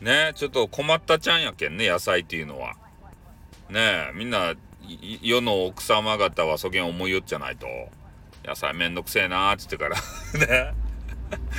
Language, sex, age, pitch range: Japanese, male, 40-59, 90-130 Hz